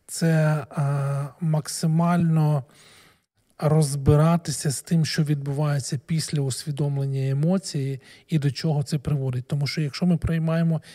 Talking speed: 115 wpm